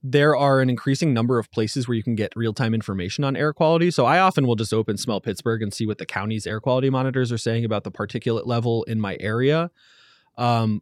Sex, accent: male, American